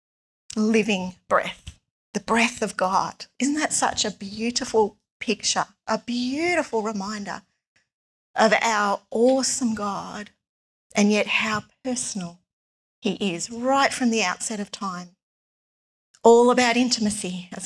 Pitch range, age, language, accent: 200-235 Hz, 40-59, English, Australian